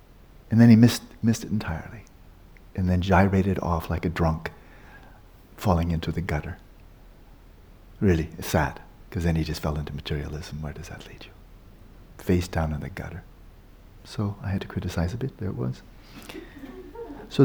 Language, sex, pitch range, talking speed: English, male, 85-120 Hz, 165 wpm